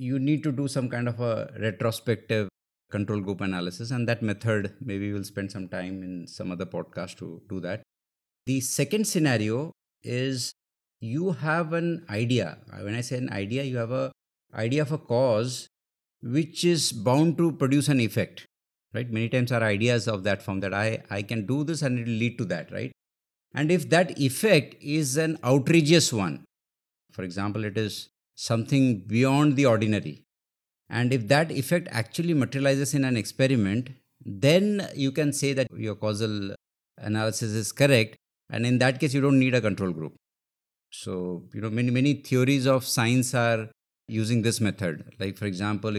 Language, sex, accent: English, male, Indian